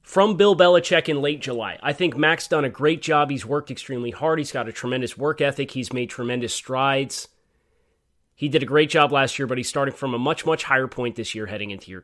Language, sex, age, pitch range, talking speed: English, male, 30-49, 115-150 Hz, 240 wpm